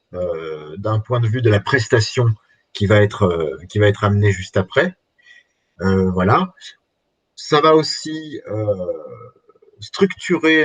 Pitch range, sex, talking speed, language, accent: 105-130 Hz, male, 140 wpm, French, French